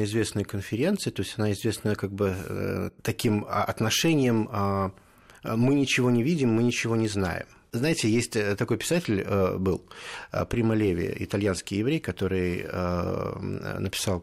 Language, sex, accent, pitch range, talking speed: Russian, male, native, 95-125 Hz, 120 wpm